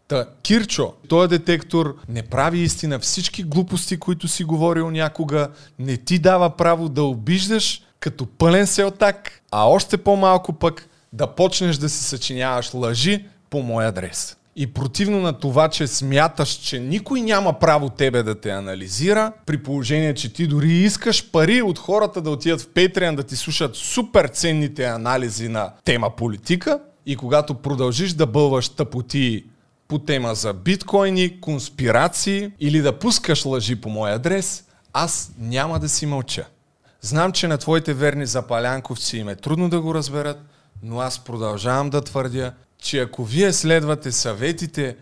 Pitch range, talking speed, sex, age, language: 130-175 Hz, 155 wpm, male, 30-49, Bulgarian